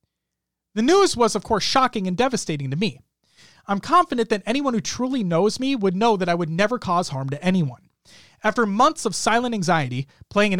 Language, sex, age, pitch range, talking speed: English, male, 30-49, 155-240 Hz, 200 wpm